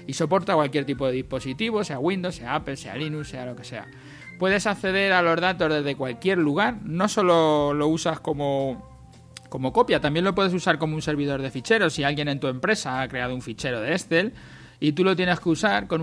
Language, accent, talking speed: Spanish, Spanish, 215 wpm